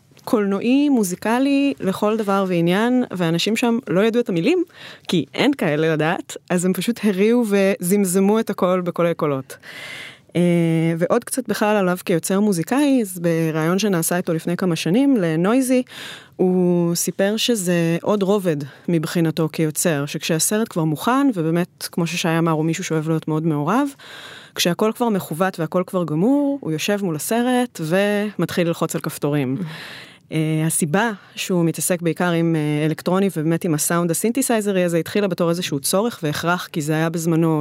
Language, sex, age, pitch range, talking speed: Hebrew, female, 20-39, 165-210 Hz, 145 wpm